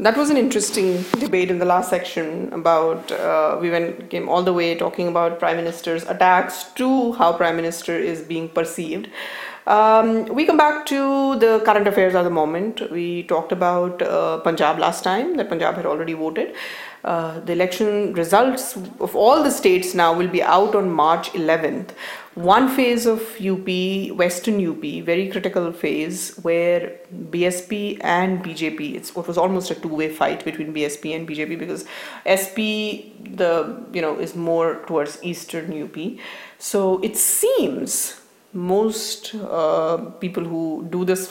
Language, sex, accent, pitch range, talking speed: English, female, Indian, 170-220 Hz, 160 wpm